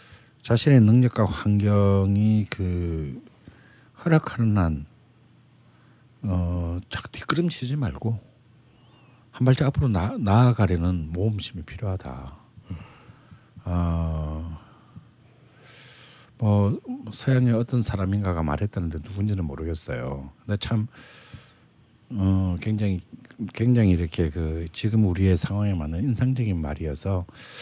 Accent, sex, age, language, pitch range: native, male, 60-79, Korean, 85-120 Hz